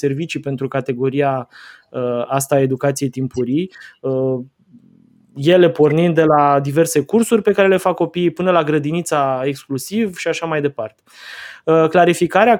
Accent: native